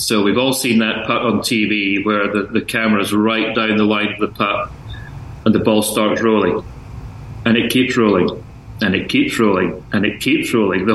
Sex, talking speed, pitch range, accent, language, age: male, 205 wpm, 110-120 Hz, British, English, 30-49